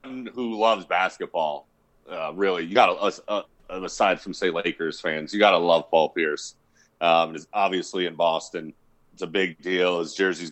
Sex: male